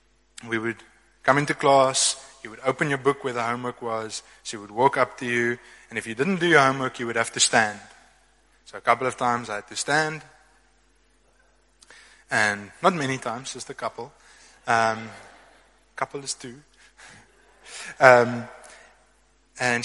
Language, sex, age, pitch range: English, male, 20-39, 115-145 Hz